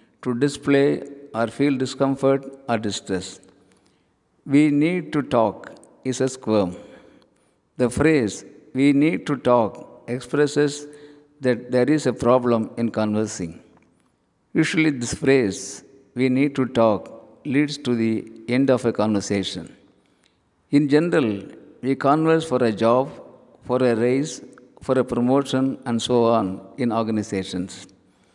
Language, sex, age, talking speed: Tamil, male, 50-69, 125 wpm